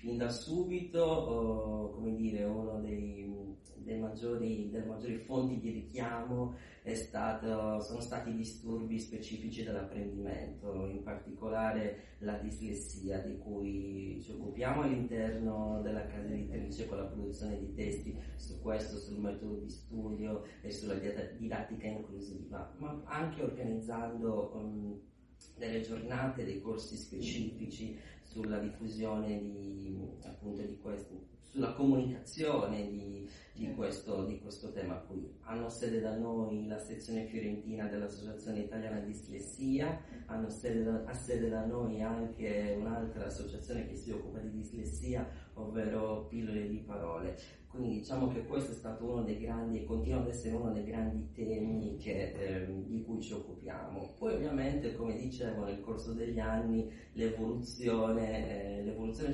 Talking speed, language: 130 wpm, Italian